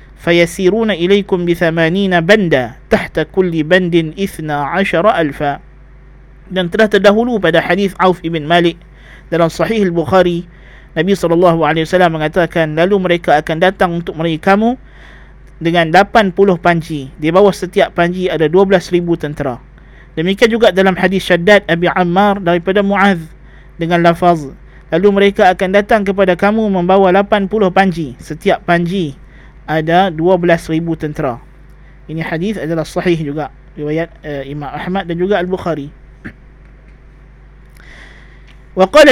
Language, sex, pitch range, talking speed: Malay, male, 160-195 Hz, 120 wpm